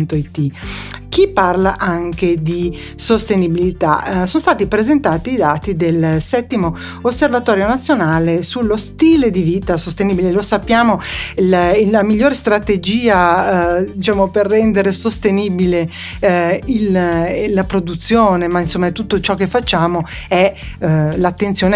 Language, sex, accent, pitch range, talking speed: Italian, female, native, 175-235 Hz, 125 wpm